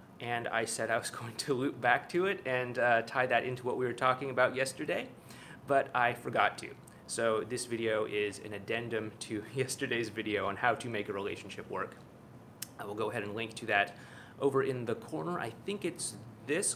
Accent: American